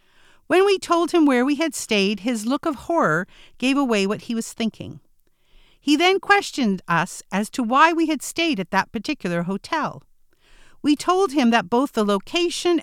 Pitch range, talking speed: 195-305 Hz, 180 wpm